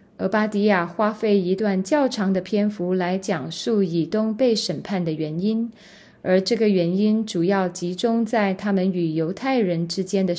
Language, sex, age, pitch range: Chinese, female, 20-39, 180-220 Hz